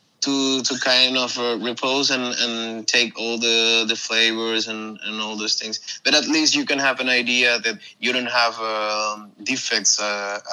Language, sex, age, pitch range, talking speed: Czech, male, 20-39, 105-120 Hz, 190 wpm